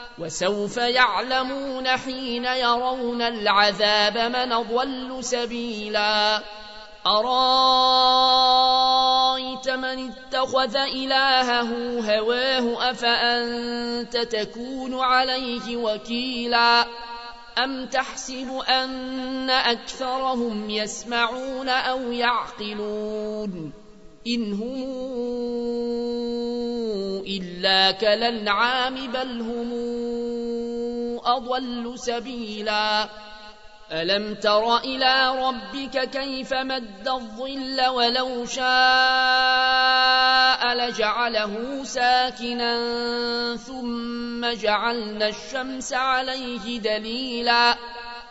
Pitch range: 235-255 Hz